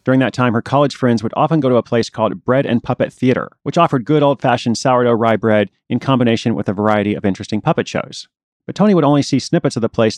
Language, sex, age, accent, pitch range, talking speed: English, male, 30-49, American, 105-135 Hz, 255 wpm